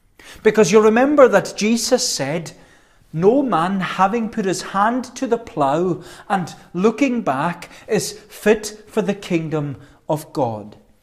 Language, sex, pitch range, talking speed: English, male, 140-215 Hz, 135 wpm